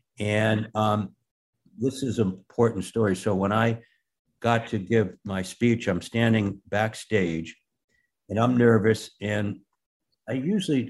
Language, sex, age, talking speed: English, male, 60-79, 130 wpm